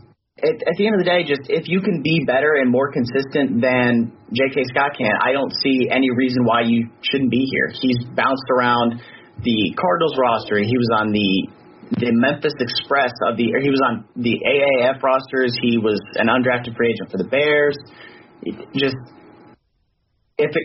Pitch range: 120-140 Hz